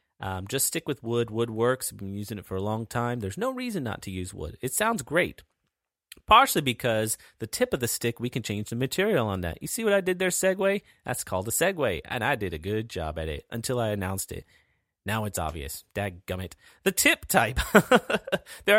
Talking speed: 225 wpm